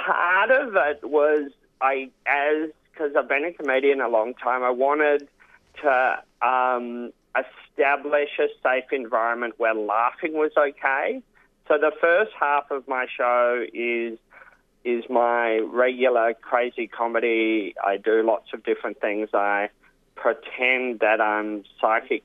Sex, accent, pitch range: male, Australian, 110-140 Hz